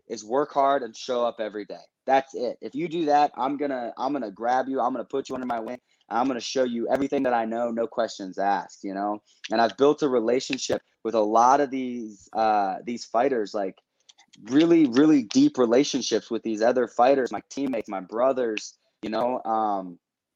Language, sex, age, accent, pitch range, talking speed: English, male, 20-39, American, 115-135 Hz, 215 wpm